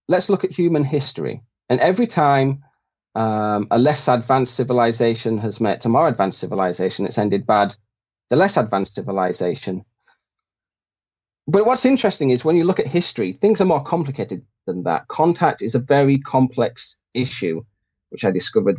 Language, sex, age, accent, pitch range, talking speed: English, male, 30-49, British, 110-145 Hz, 160 wpm